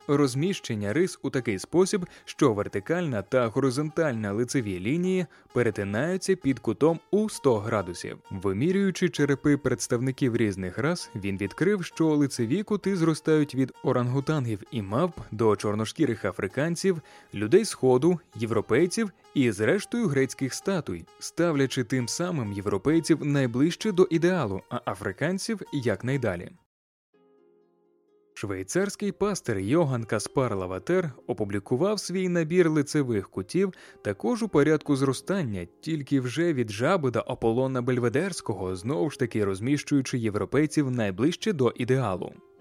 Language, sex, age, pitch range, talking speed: Ukrainian, male, 20-39, 115-175 Hz, 115 wpm